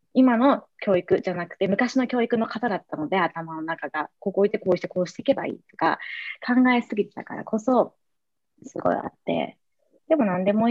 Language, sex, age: Japanese, female, 20-39